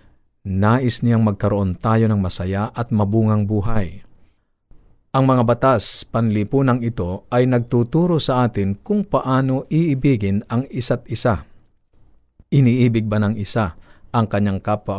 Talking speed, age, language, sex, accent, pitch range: 125 wpm, 50-69, Filipino, male, native, 100-125 Hz